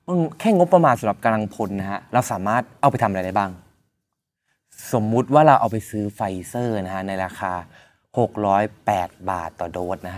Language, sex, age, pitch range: Thai, male, 20-39, 100-130 Hz